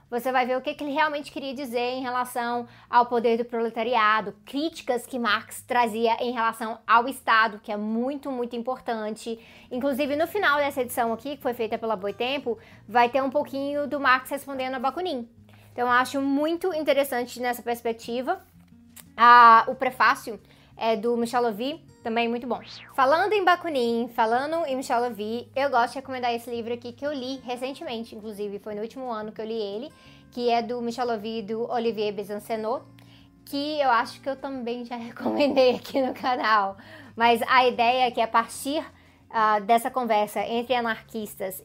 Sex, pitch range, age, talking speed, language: female, 230-270 Hz, 20-39, 180 wpm, Portuguese